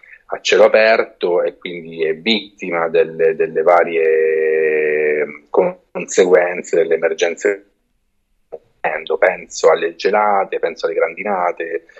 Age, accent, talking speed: 30-49, native, 95 wpm